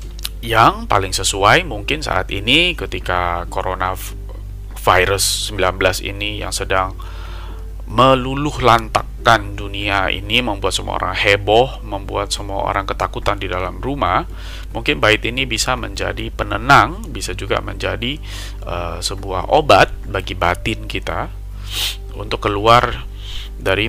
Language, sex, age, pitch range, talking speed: Indonesian, male, 20-39, 95-115 Hz, 115 wpm